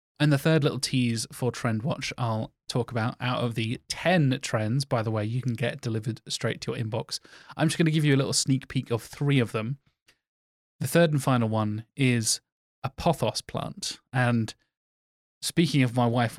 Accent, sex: British, male